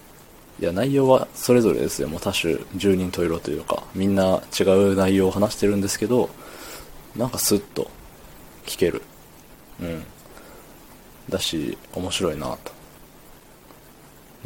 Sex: male